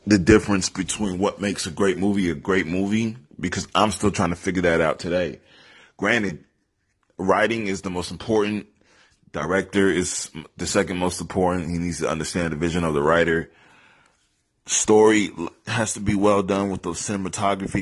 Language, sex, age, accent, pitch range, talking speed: English, male, 20-39, American, 85-100 Hz, 170 wpm